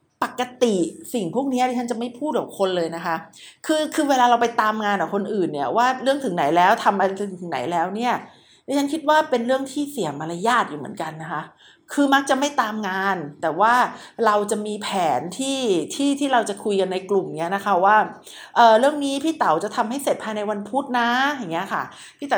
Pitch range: 195-260 Hz